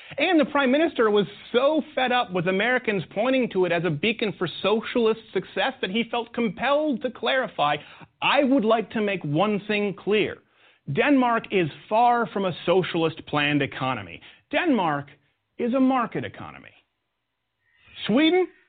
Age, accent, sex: 40-59, American, male